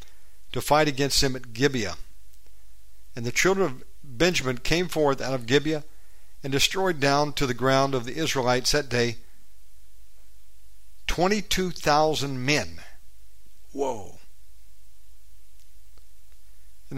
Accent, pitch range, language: American, 105-155 Hz, English